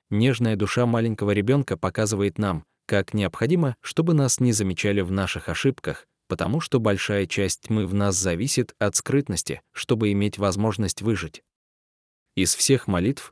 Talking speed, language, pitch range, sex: 145 wpm, Russian, 90-120 Hz, male